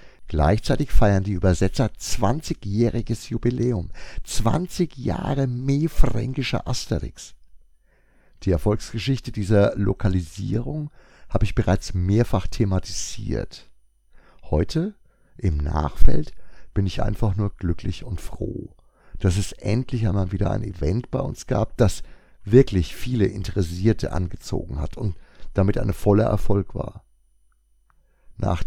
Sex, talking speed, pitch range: male, 110 wpm, 90-115 Hz